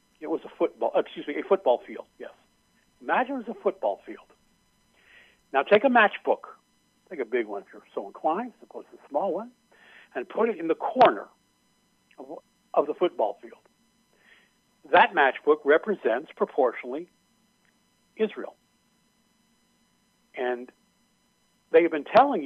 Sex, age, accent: male, 60-79, American